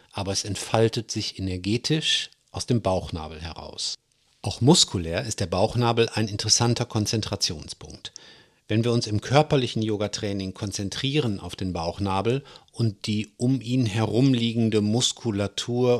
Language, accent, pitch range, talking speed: German, German, 100-125 Hz, 125 wpm